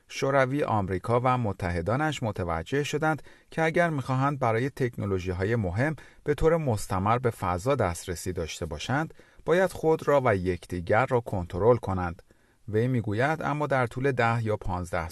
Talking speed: 145 wpm